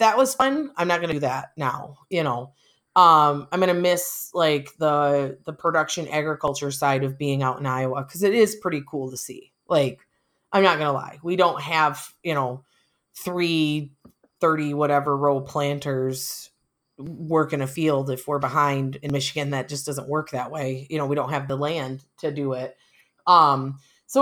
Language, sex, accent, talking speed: English, female, American, 185 wpm